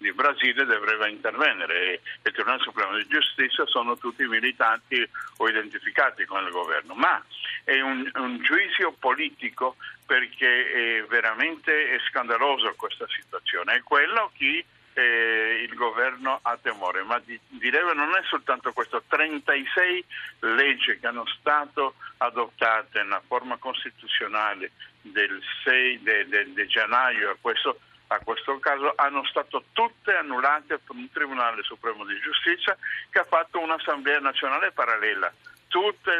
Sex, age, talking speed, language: male, 60-79, 140 wpm, Italian